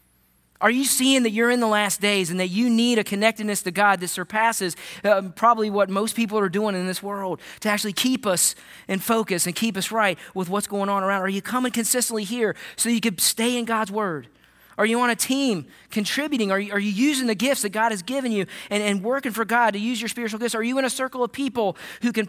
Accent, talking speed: American, 250 wpm